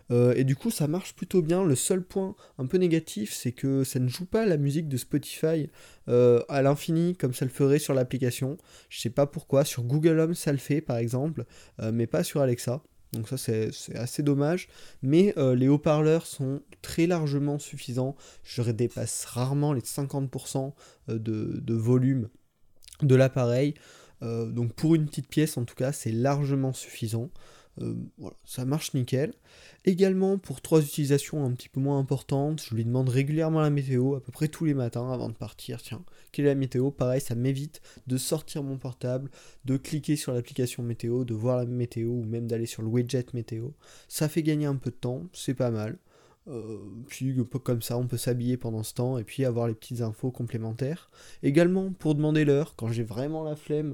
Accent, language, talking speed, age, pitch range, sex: French, French, 195 wpm, 20-39, 120-150 Hz, male